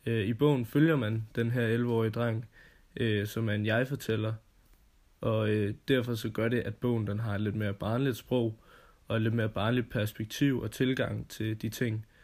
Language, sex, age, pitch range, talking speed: Danish, male, 20-39, 105-120 Hz, 175 wpm